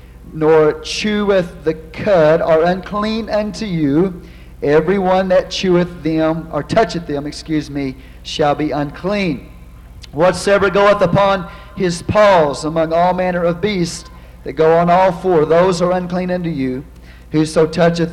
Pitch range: 150-180 Hz